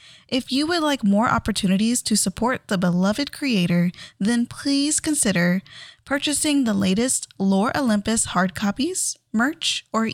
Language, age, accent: English, 10-29, American